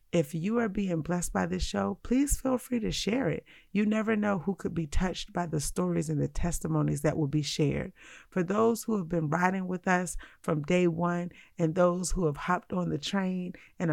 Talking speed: 220 wpm